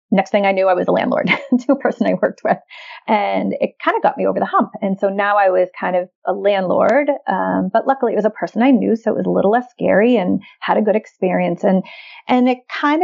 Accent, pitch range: American, 195-255 Hz